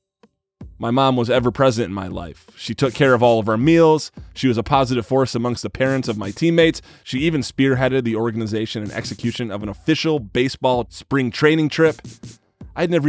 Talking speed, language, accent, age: 195 wpm, English, American, 20-39